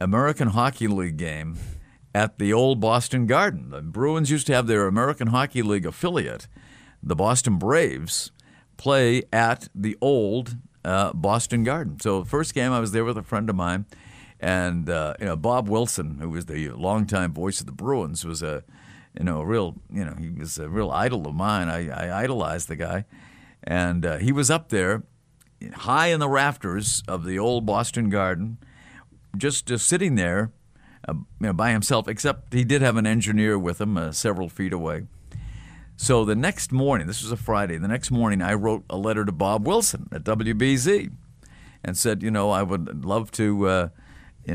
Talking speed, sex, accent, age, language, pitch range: 190 wpm, male, American, 50-69, English, 95-120 Hz